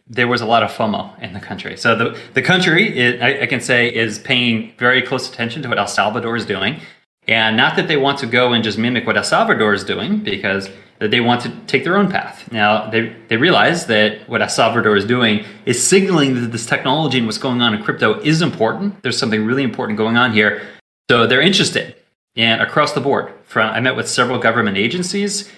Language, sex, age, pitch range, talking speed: English, male, 30-49, 115-140 Hz, 230 wpm